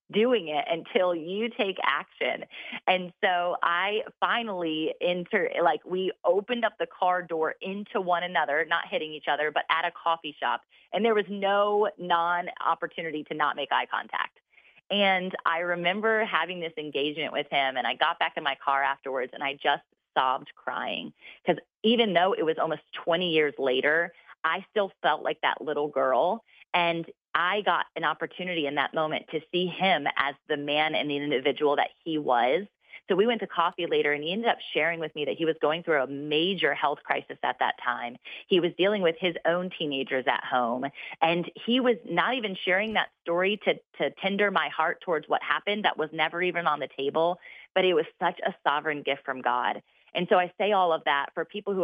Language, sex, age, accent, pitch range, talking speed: English, female, 30-49, American, 150-185 Hz, 200 wpm